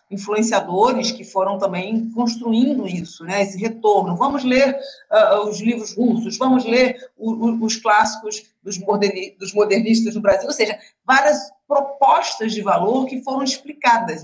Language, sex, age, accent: Portuguese, female, 40-59, Brazilian